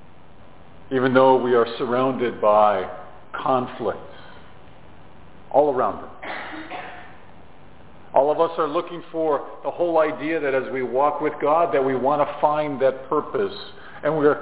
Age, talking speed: 50-69, 145 wpm